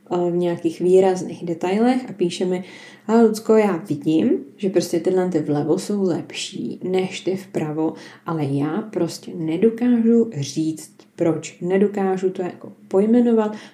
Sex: female